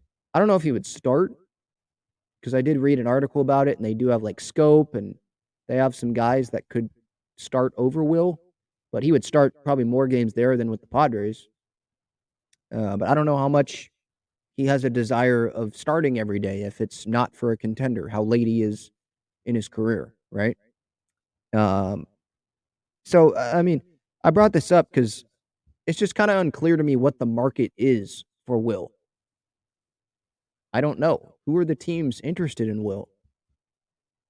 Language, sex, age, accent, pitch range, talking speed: English, male, 30-49, American, 110-145 Hz, 180 wpm